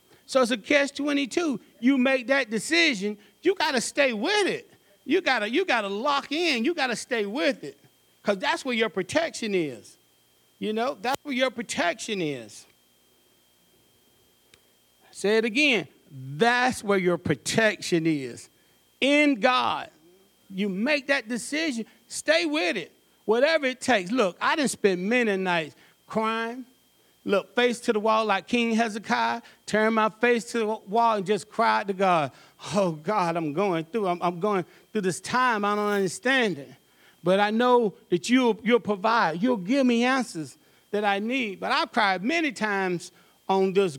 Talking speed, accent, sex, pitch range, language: 165 wpm, American, male, 180-250 Hz, English